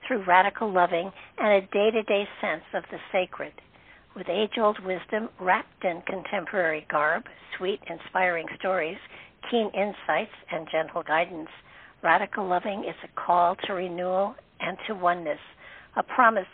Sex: female